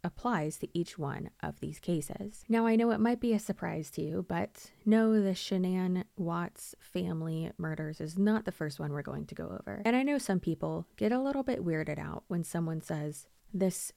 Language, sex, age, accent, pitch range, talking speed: English, female, 20-39, American, 160-225 Hz, 210 wpm